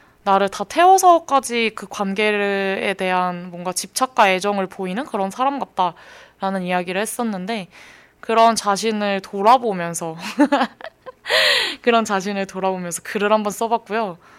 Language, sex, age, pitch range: Korean, female, 20-39, 185-235 Hz